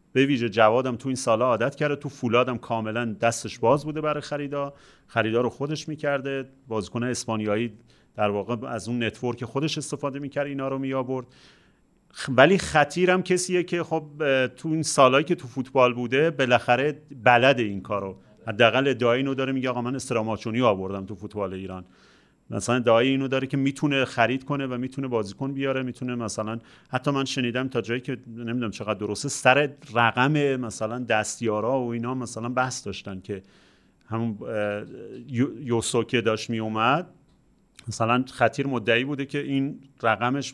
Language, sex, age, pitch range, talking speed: Persian, male, 40-59, 110-135 Hz, 155 wpm